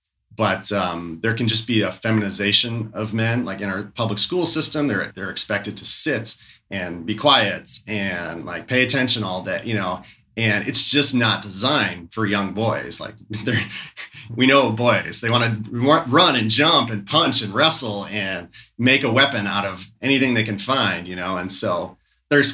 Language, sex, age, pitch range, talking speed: English, male, 30-49, 100-120 Hz, 185 wpm